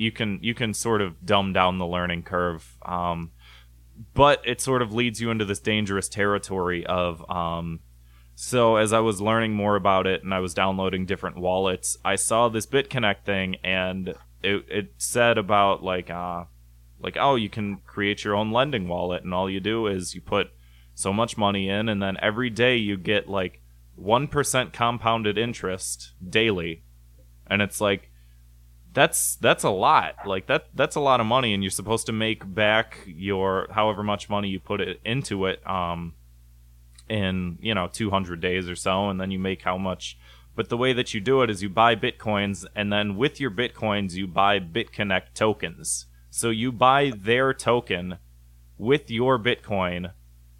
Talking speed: 180 wpm